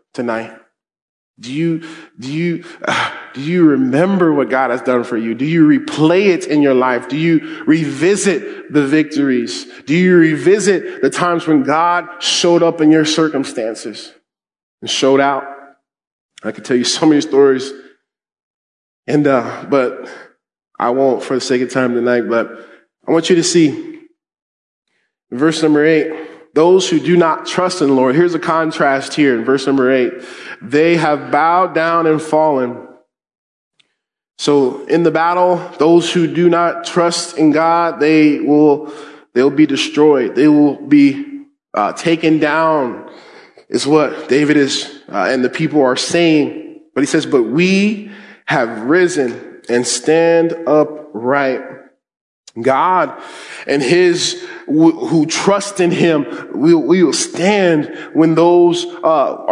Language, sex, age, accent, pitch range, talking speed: English, male, 20-39, American, 145-175 Hz, 150 wpm